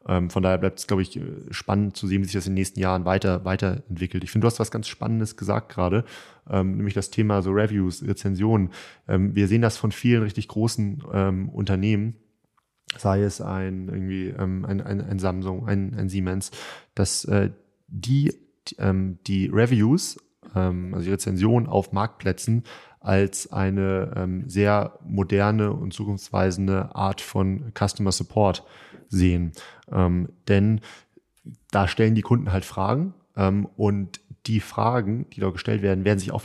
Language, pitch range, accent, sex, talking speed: German, 95-110 Hz, German, male, 150 wpm